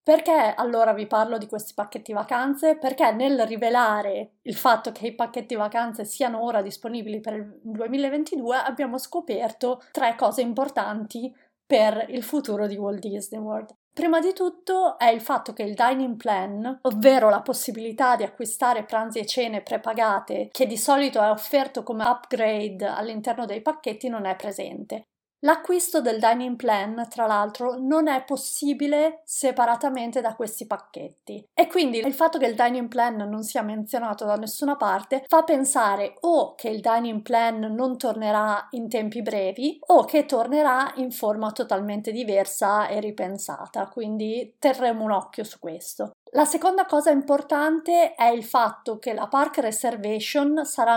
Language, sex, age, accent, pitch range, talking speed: Italian, female, 30-49, native, 220-275 Hz, 155 wpm